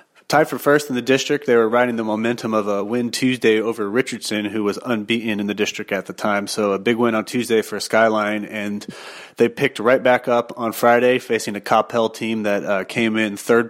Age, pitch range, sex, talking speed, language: 30-49, 105-120 Hz, male, 225 wpm, English